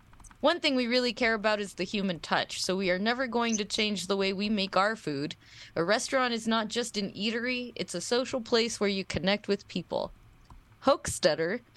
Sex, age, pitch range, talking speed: female, 20-39, 170-225 Hz, 205 wpm